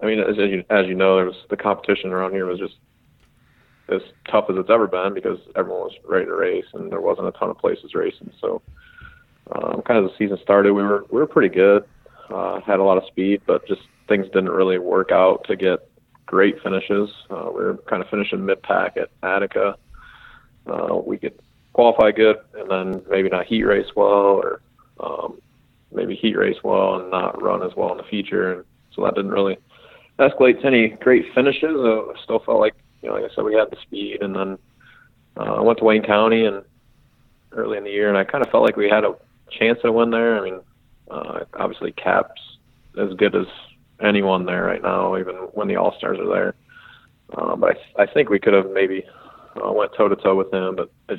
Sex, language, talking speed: male, English, 215 wpm